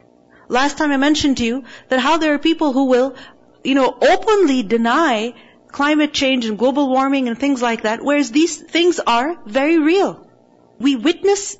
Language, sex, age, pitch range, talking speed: English, female, 40-59, 235-320 Hz, 175 wpm